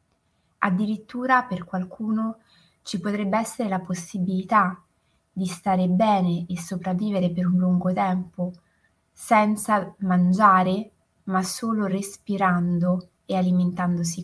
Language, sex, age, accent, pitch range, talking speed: Italian, female, 20-39, native, 170-205 Hz, 100 wpm